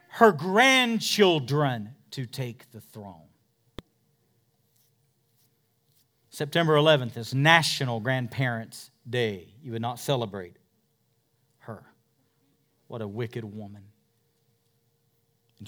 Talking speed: 85 wpm